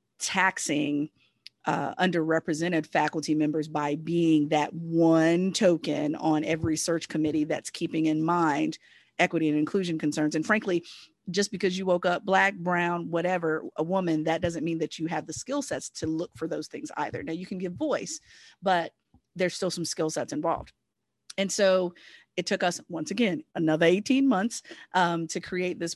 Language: English